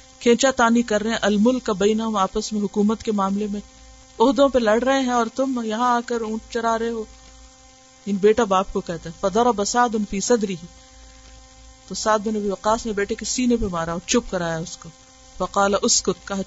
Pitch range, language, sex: 170-230 Hz, Urdu, female